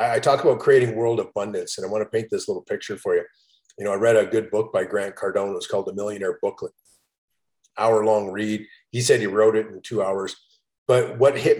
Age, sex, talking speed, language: 40-59, male, 240 wpm, English